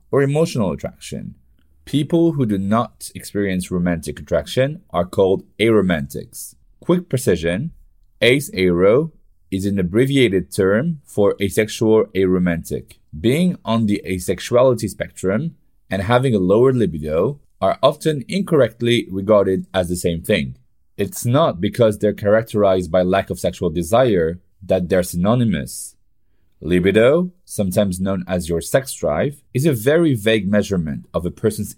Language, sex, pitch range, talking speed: French, male, 90-120 Hz, 130 wpm